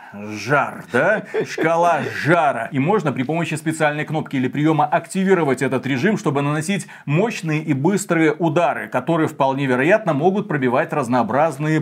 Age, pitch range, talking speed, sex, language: 30-49, 140-180 Hz, 135 wpm, male, Russian